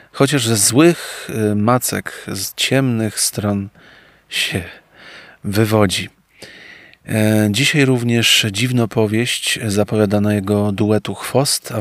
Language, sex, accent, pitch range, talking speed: Polish, male, native, 105-125 Hz, 85 wpm